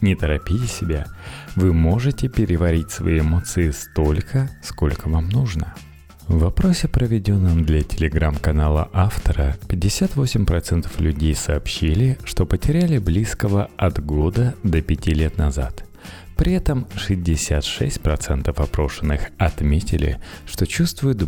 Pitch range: 75-105 Hz